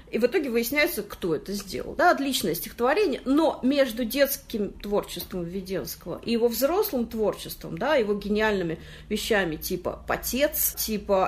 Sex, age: female, 40-59